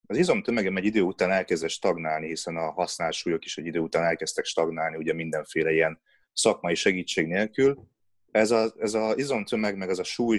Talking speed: 175 wpm